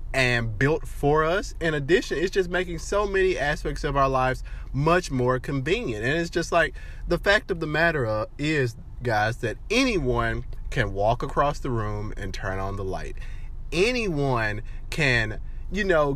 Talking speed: 170 wpm